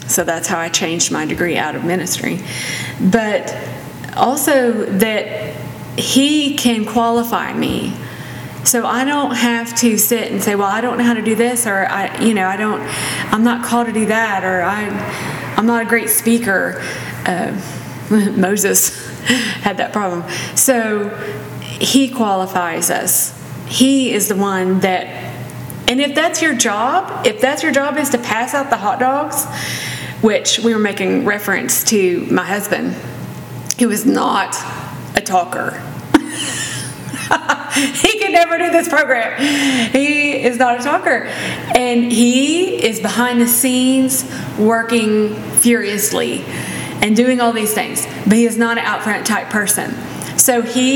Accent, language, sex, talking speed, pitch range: American, English, female, 155 wpm, 210-260 Hz